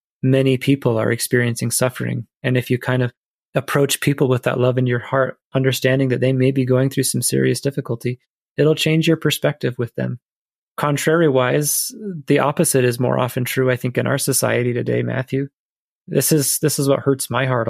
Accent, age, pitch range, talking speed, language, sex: American, 30-49, 125-145 Hz, 190 wpm, English, male